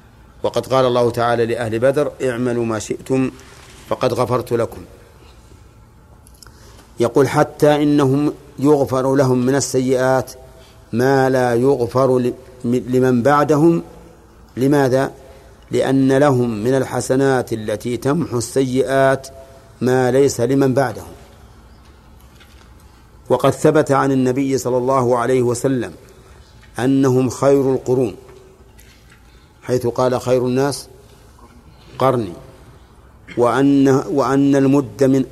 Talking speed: 95 wpm